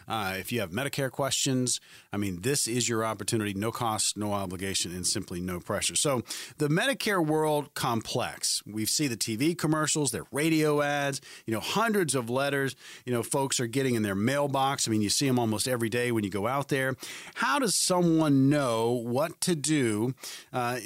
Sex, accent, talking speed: male, American, 195 wpm